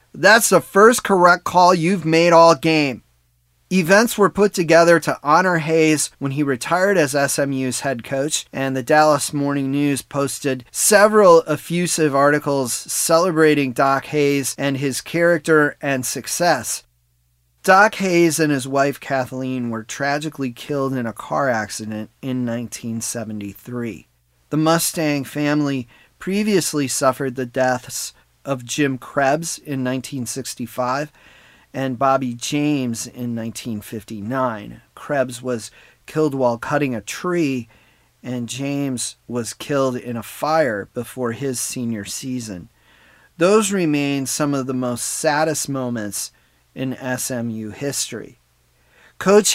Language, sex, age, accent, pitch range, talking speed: English, male, 30-49, American, 125-165 Hz, 125 wpm